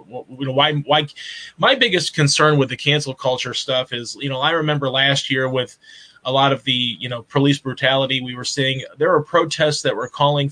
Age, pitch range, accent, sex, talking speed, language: 20-39, 130-150 Hz, American, male, 190 wpm, English